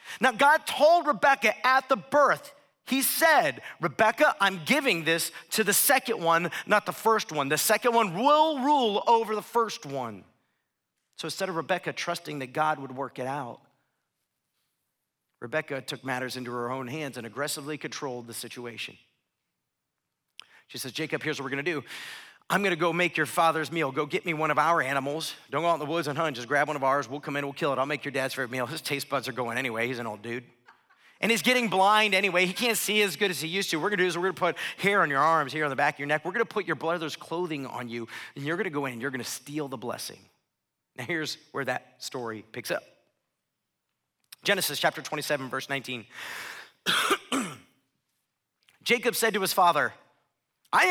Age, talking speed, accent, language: 40-59, 210 wpm, American, English